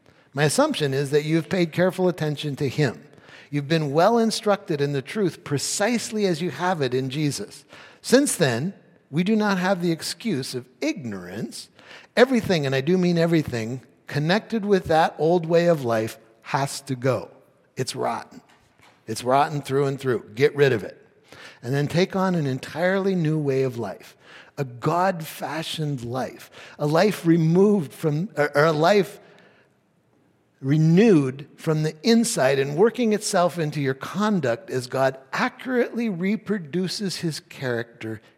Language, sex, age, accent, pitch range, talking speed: English, male, 60-79, American, 135-190 Hz, 150 wpm